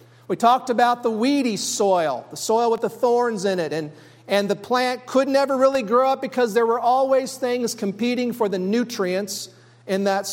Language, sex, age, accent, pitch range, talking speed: English, male, 40-59, American, 165-215 Hz, 190 wpm